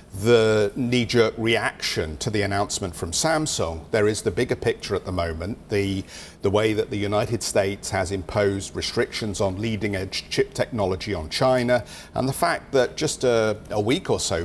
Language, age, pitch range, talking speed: English, 50-69, 100-125 Hz, 185 wpm